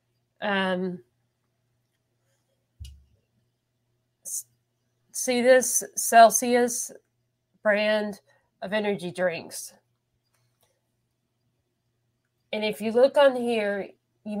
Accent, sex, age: American, female, 30-49